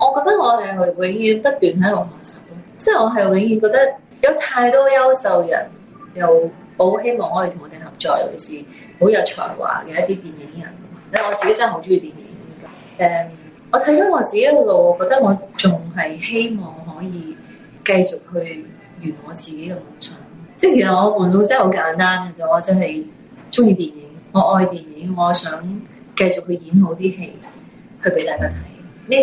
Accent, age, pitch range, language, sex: native, 30-49, 175-230 Hz, Chinese, female